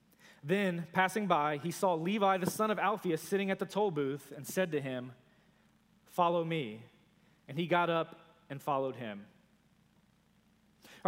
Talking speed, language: 155 wpm, English